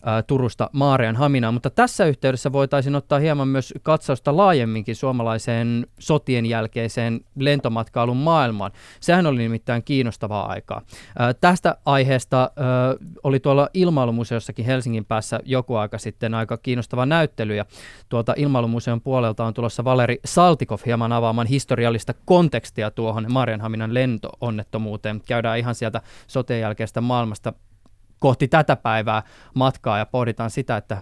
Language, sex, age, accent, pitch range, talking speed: Finnish, male, 20-39, native, 110-140 Hz, 125 wpm